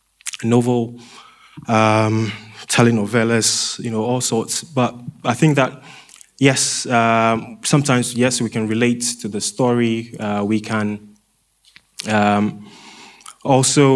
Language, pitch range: English, 110-130 Hz